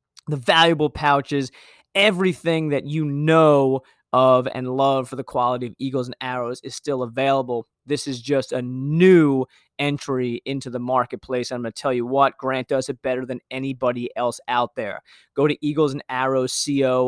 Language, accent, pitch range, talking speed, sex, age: English, American, 125-145 Hz, 175 wpm, male, 20-39